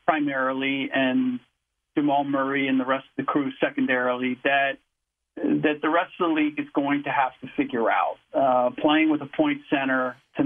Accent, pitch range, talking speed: American, 135-185 Hz, 185 wpm